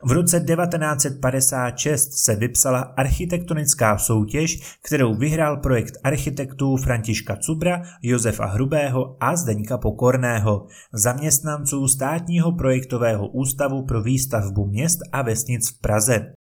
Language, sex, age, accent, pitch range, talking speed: Czech, male, 20-39, native, 115-150 Hz, 105 wpm